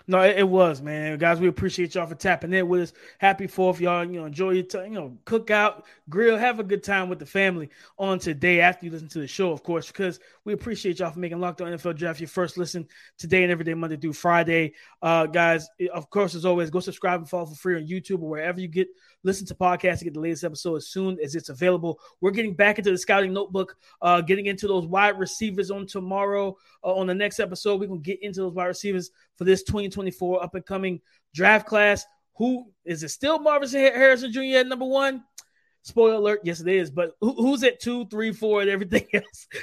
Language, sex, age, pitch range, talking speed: English, male, 20-39, 175-205 Hz, 230 wpm